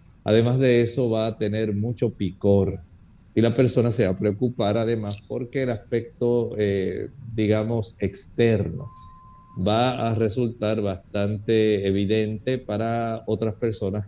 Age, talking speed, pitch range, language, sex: 50-69, 130 wpm, 100-120 Hz, Spanish, male